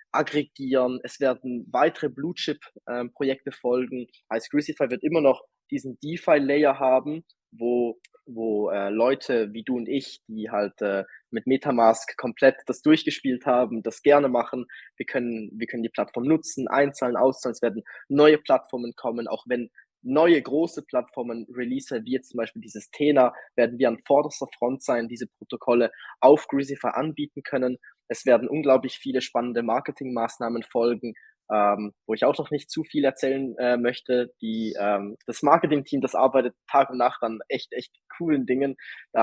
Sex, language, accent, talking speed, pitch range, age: male, German, German, 160 wpm, 120-145 Hz, 20-39